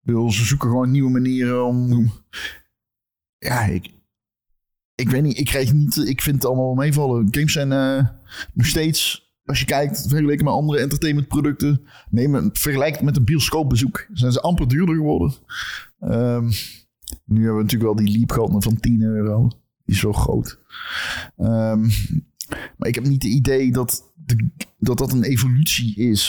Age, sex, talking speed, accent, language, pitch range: 30-49, male, 170 wpm, Dutch, Dutch, 110-130 Hz